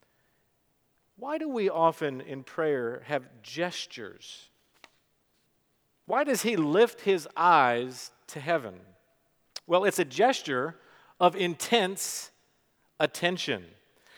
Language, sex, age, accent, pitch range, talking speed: English, male, 50-69, American, 135-190 Hz, 95 wpm